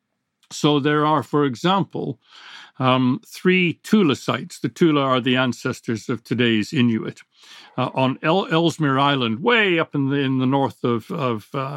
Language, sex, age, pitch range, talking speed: English, male, 60-79, 130-170 Hz, 155 wpm